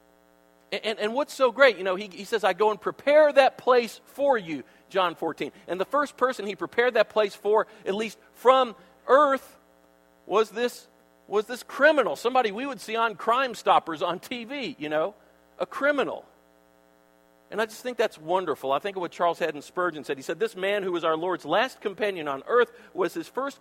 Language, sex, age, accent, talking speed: English, male, 50-69, American, 205 wpm